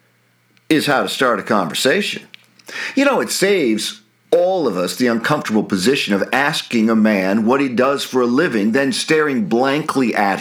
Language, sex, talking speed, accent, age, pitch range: English, male, 175 wpm, American, 50-69, 90-125 Hz